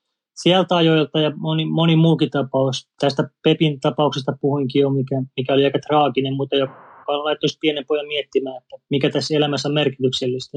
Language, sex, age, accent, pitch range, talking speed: Finnish, male, 30-49, native, 140-165 Hz, 165 wpm